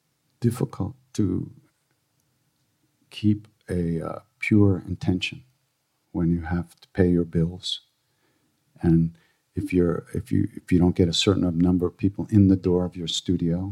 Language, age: English, 50-69